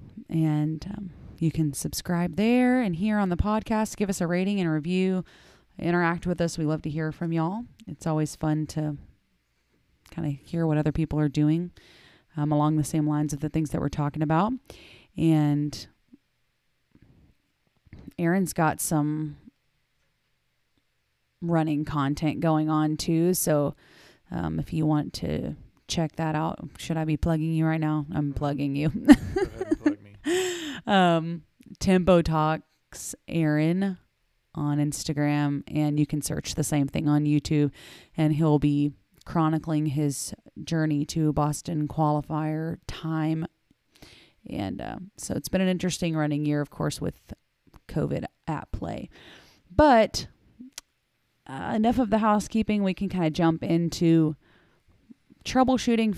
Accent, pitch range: American, 150-175 Hz